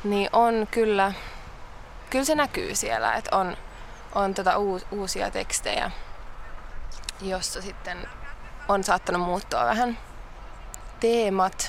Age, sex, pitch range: 20-39, female, 195-225 Hz